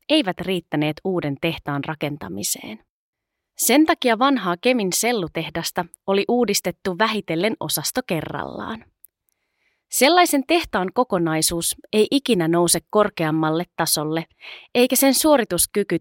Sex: female